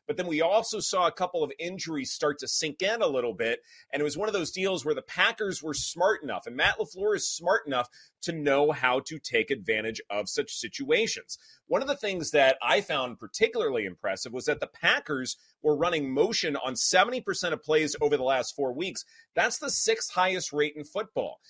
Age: 30-49